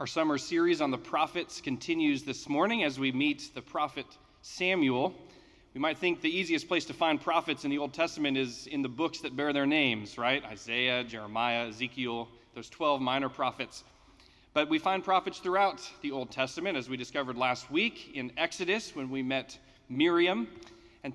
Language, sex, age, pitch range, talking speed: English, male, 30-49, 120-165 Hz, 180 wpm